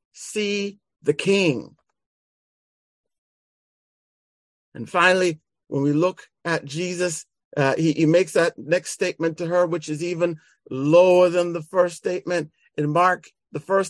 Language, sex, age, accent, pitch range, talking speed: English, male, 50-69, American, 130-170 Hz, 135 wpm